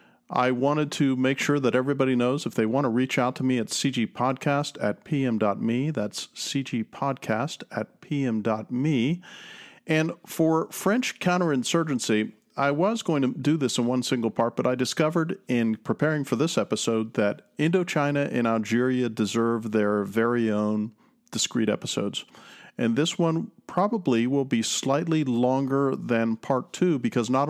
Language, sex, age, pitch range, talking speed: English, male, 40-59, 115-145 Hz, 150 wpm